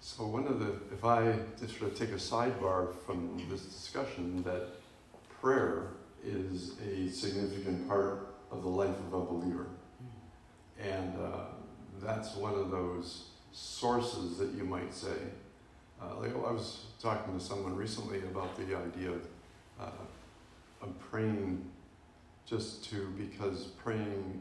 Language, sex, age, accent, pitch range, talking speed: English, male, 50-69, American, 90-115 Hz, 145 wpm